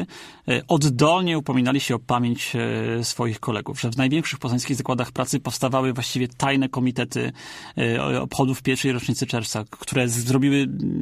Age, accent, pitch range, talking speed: 30-49, native, 120-140 Hz, 125 wpm